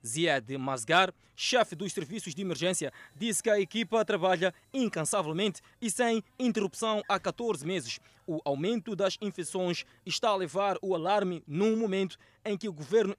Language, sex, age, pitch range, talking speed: Portuguese, male, 20-39, 175-225 Hz, 155 wpm